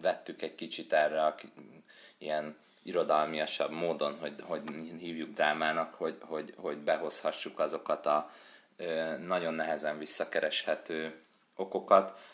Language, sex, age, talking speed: Hungarian, male, 30-49, 105 wpm